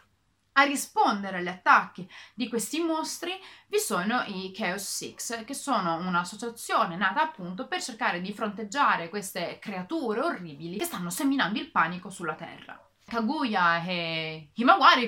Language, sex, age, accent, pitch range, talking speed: Italian, female, 30-49, native, 180-250 Hz, 140 wpm